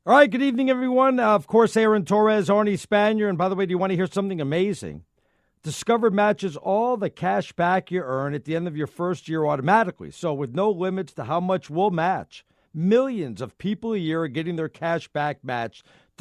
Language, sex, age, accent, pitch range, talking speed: English, male, 50-69, American, 155-200 Hz, 220 wpm